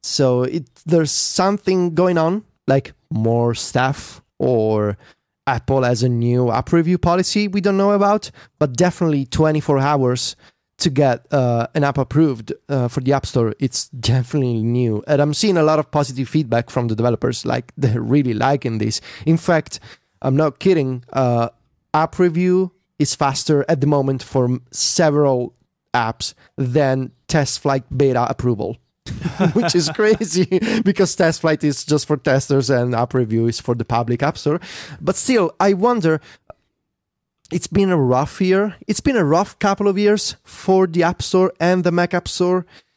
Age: 30-49